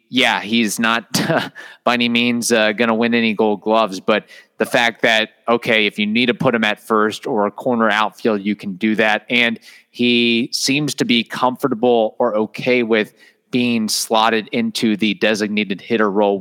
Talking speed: 185 wpm